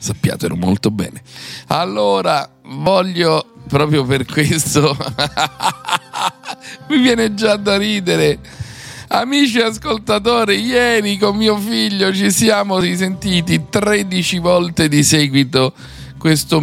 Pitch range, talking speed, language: 100-155 Hz, 95 wpm, Italian